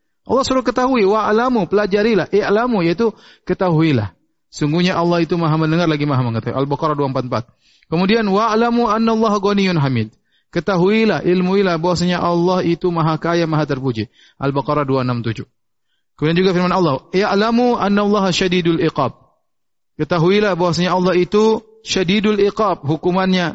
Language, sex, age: Indonesian, male, 30-49